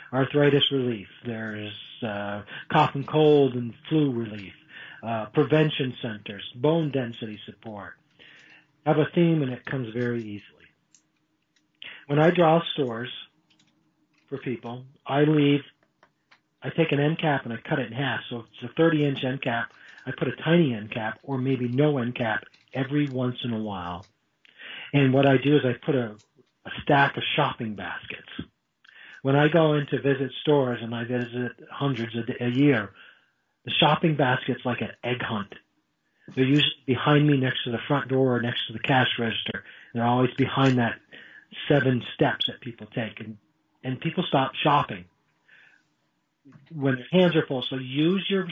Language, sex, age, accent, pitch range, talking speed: English, male, 40-59, American, 120-150 Hz, 170 wpm